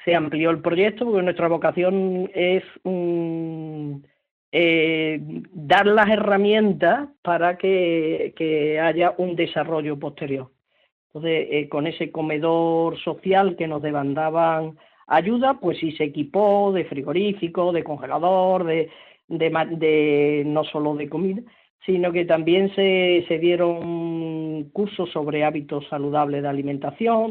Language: Spanish